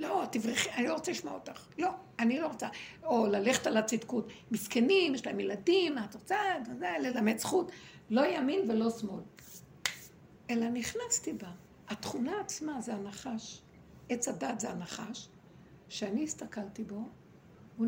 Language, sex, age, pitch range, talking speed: Hebrew, female, 60-79, 215-290 Hz, 145 wpm